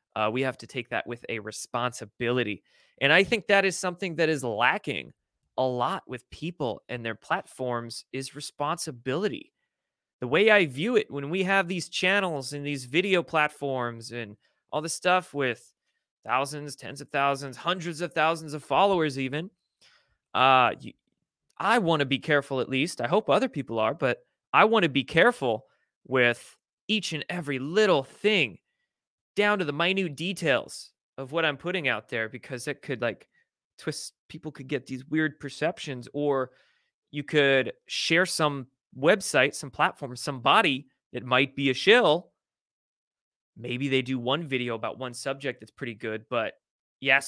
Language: English